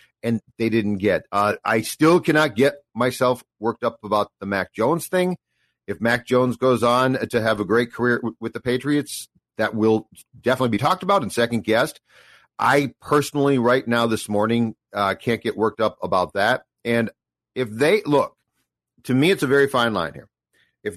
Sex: male